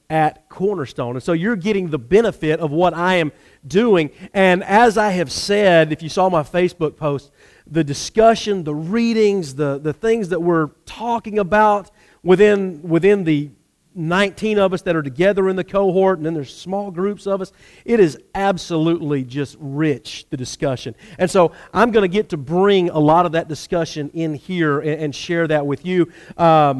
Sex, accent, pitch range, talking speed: male, American, 155-205 Hz, 185 wpm